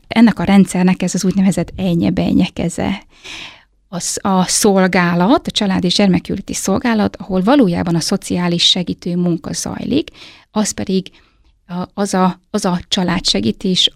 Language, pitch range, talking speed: Hungarian, 180-200 Hz, 115 wpm